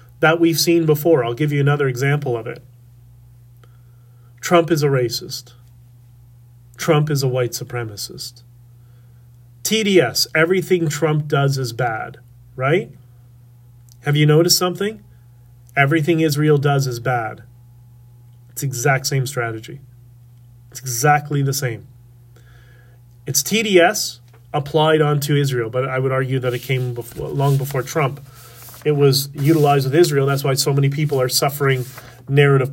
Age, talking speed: 30-49, 135 wpm